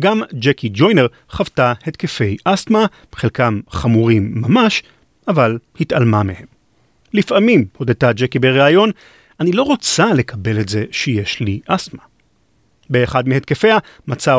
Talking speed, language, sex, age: 115 wpm, Hebrew, male, 40-59